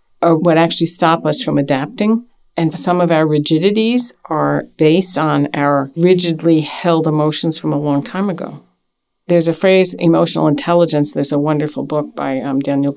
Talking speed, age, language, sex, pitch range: 165 wpm, 50-69, English, female, 140-165 Hz